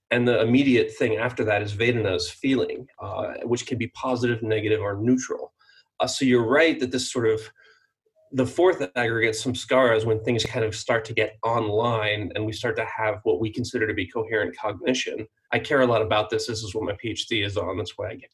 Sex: male